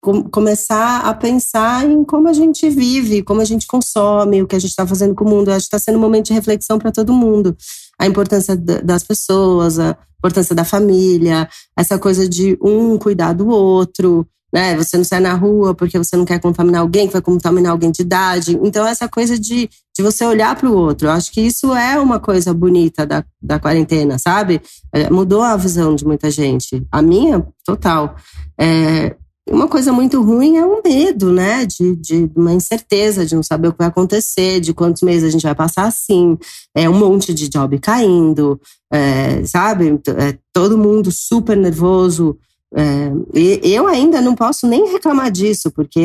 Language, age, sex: Portuguese, 30-49, female